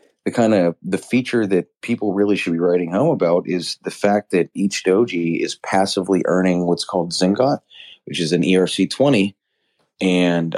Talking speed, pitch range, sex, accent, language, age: 170 wpm, 80-95 Hz, male, American, English, 30-49